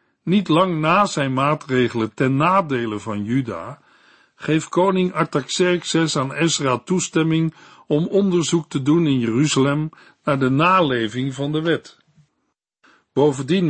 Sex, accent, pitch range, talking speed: male, Dutch, 130-170 Hz, 125 wpm